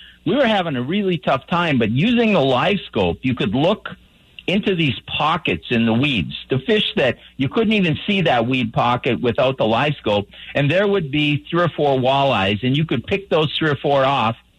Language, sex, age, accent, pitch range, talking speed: English, male, 50-69, American, 125-165 Hz, 215 wpm